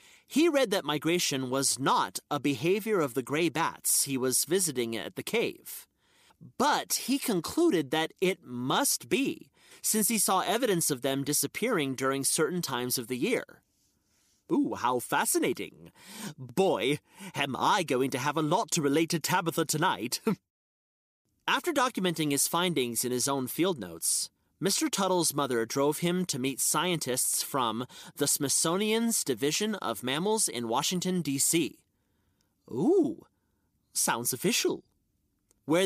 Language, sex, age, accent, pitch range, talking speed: English, male, 30-49, American, 135-195 Hz, 140 wpm